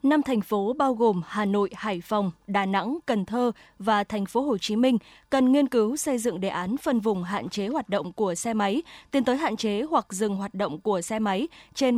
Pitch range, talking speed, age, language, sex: 205-260 Hz, 235 wpm, 20-39, Vietnamese, female